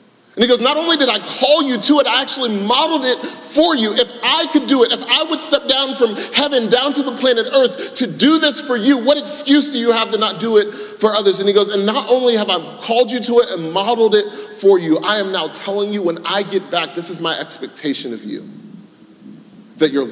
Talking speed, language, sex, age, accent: 250 wpm, English, male, 30-49, American